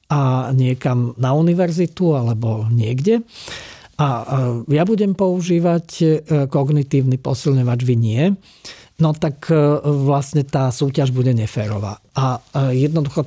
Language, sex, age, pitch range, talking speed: Slovak, male, 40-59, 125-155 Hz, 105 wpm